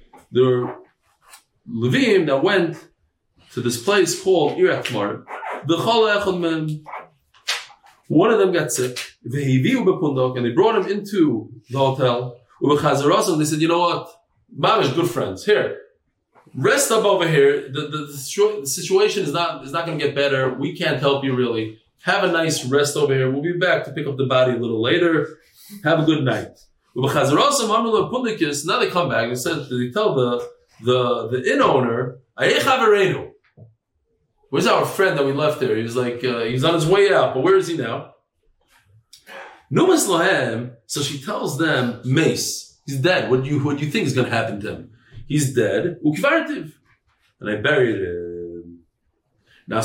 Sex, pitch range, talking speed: male, 125-170 Hz, 160 wpm